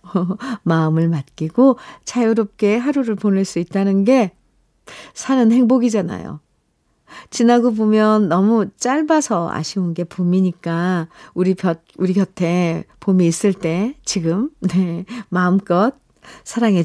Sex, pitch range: female, 175-245 Hz